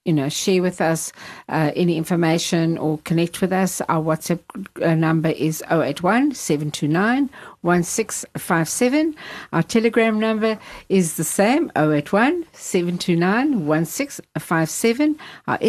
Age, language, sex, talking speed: 60-79, English, female, 95 wpm